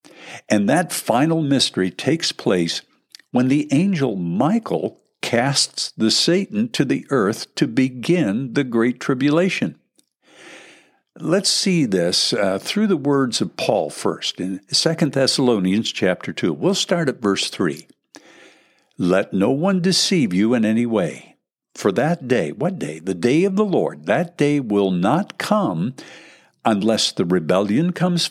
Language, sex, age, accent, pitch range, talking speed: English, male, 60-79, American, 105-180 Hz, 145 wpm